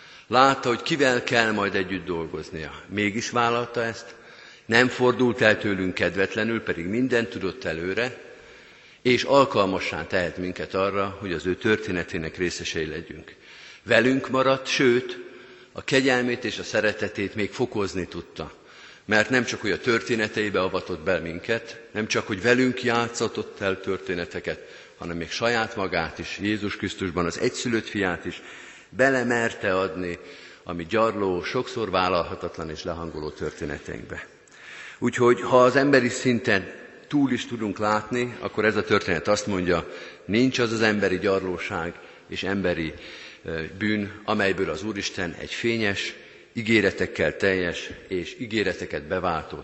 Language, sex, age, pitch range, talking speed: Hungarian, male, 50-69, 95-125 Hz, 135 wpm